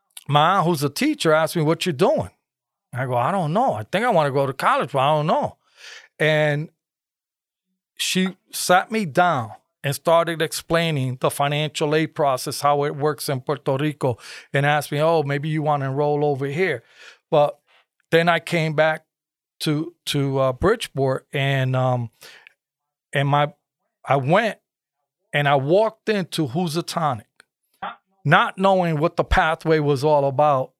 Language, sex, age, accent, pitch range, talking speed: English, male, 40-59, American, 140-165 Hz, 165 wpm